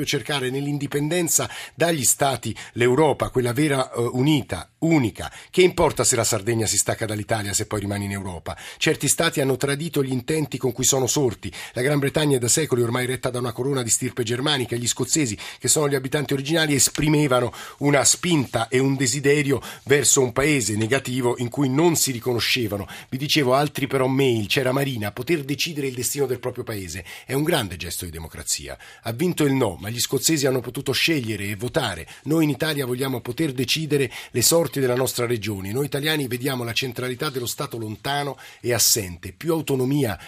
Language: Italian